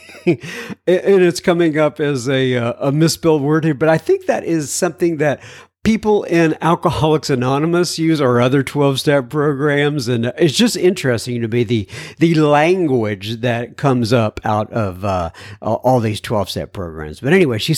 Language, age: English, 50-69